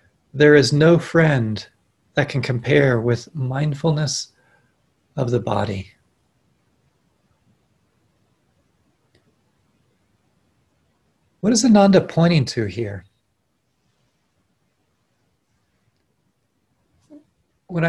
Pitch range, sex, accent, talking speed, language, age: 130-165 Hz, male, American, 65 wpm, English, 40-59